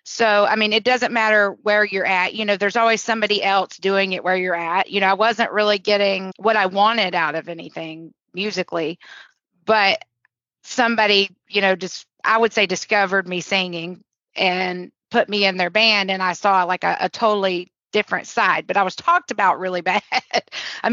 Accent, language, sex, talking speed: American, English, female, 190 wpm